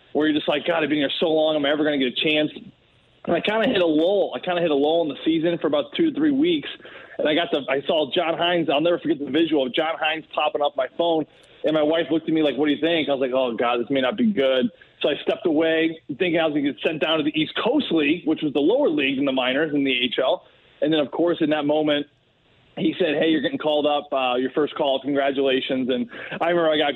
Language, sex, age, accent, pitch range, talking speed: English, male, 20-39, American, 140-165 Hz, 295 wpm